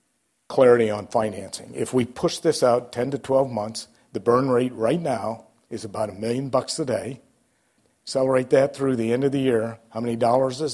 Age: 50-69